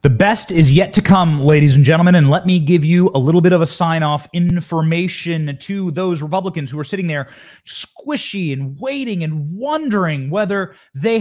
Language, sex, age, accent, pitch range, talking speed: English, male, 30-49, American, 145-195 Hz, 185 wpm